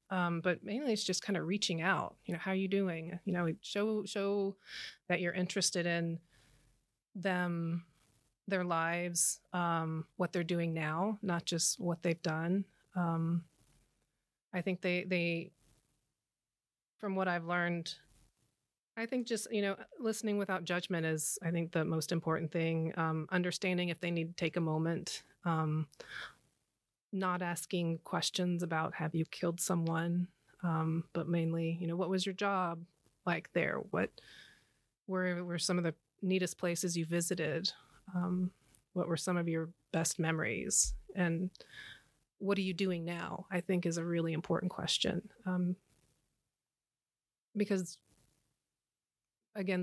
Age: 30-49